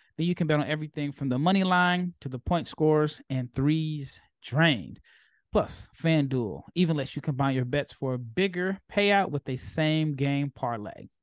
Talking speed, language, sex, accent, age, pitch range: 180 wpm, English, male, American, 20-39, 130-165 Hz